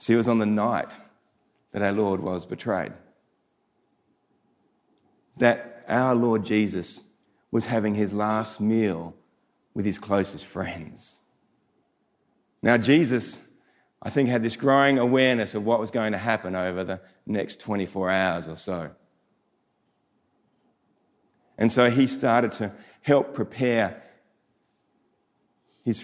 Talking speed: 120 wpm